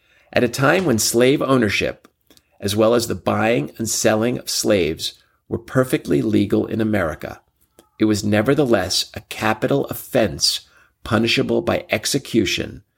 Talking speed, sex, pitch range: 135 wpm, male, 90-115 Hz